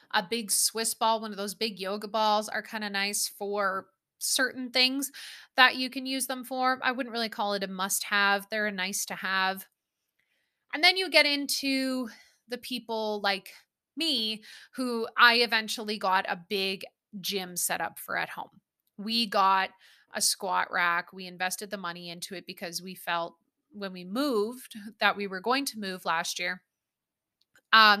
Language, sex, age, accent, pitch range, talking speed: English, female, 20-39, American, 190-230 Hz, 180 wpm